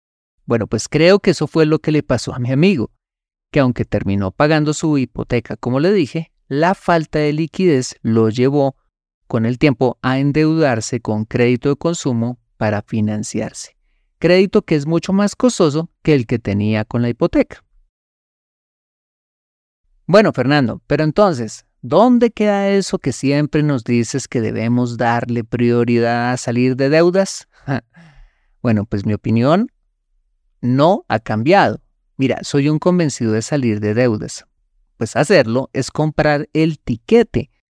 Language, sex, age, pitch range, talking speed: Spanish, male, 30-49, 115-160 Hz, 145 wpm